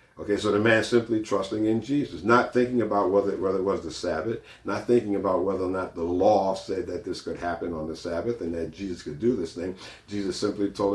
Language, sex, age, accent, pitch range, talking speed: English, male, 50-69, American, 95-120 Hz, 240 wpm